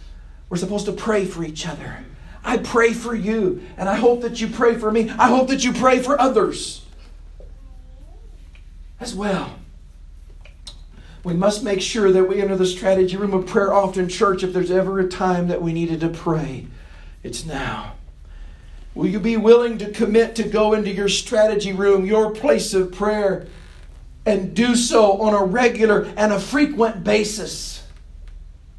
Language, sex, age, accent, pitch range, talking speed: English, male, 40-59, American, 170-225 Hz, 165 wpm